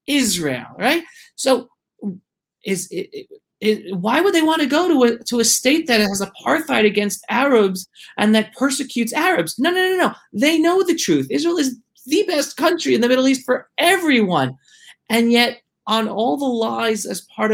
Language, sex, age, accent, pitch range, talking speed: English, male, 30-49, American, 180-260 Hz, 180 wpm